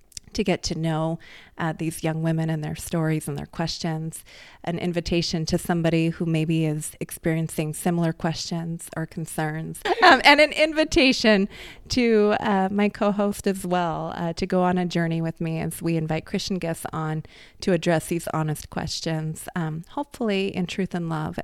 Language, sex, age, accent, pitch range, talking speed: English, female, 30-49, American, 165-205 Hz, 170 wpm